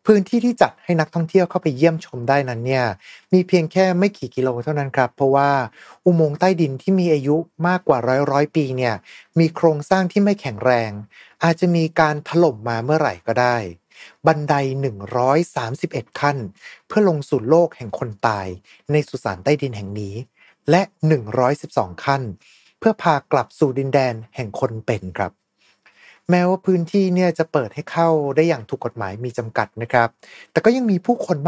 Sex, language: male, Thai